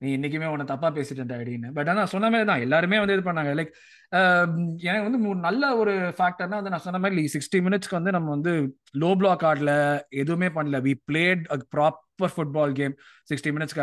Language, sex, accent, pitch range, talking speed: Tamil, male, native, 150-195 Hz, 180 wpm